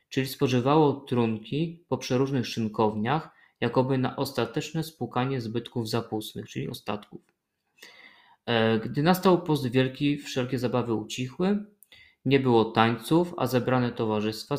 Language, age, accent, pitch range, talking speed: Polish, 20-39, native, 115-145 Hz, 110 wpm